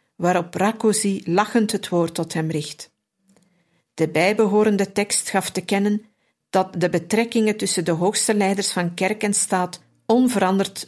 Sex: female